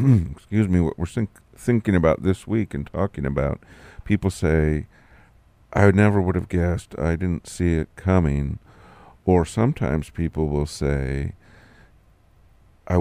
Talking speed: 140 wpm